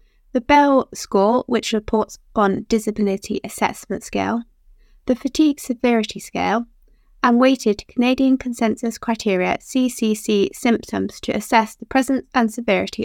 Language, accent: English, British